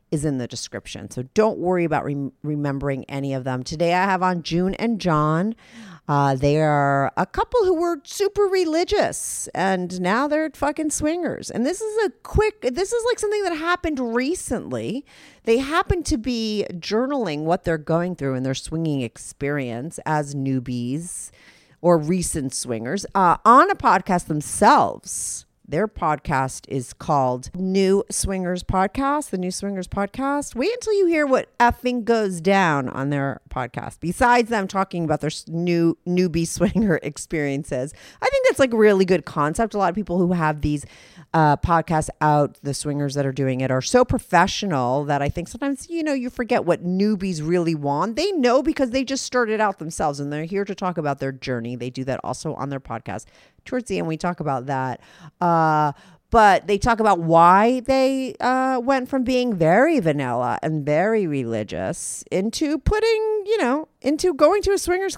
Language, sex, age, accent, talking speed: English, female, 40-59, American, 180 wpm